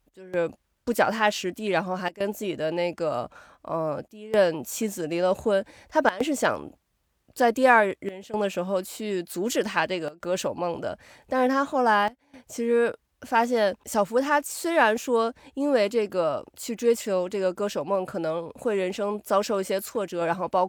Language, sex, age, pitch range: Chinese, female, 20-39, 190-260 Hz